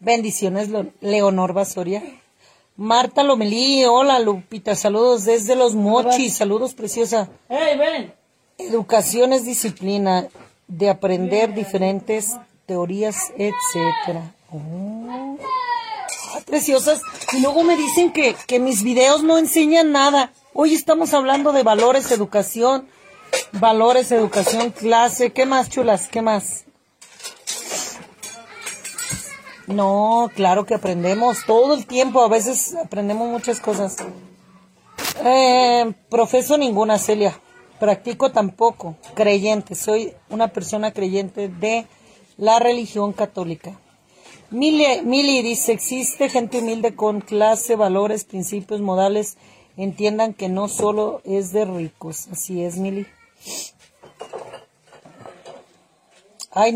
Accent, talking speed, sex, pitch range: Mexican, 105 wpm, female, 200-255 Hz